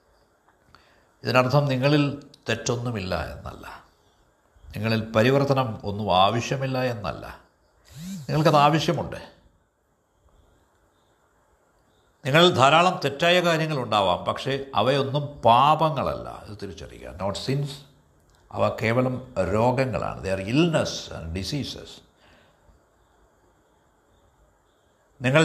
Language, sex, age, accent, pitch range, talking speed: Malayalam, male, 60-79, native, 95-145 Hz, 75 wpm